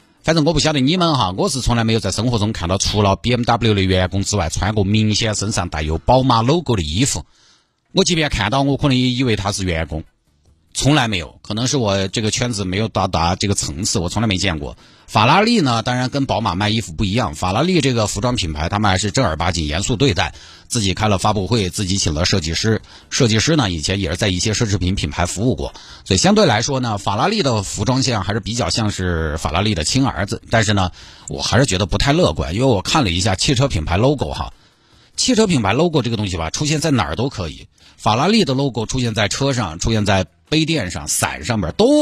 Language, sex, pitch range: Chinese, male, 95-130 Hz